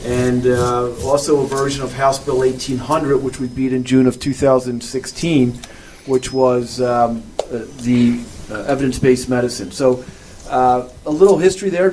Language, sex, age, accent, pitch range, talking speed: English, male, 40-59, American, 125-150 Hz, 150 wpm